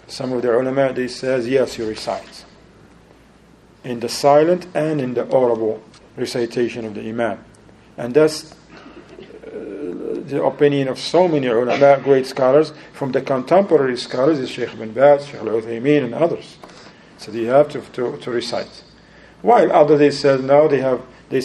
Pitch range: 130-150 Hz